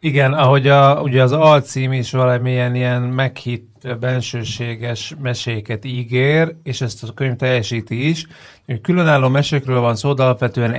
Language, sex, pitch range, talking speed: Hungarian, male, 105-130 Hz, 135 wpm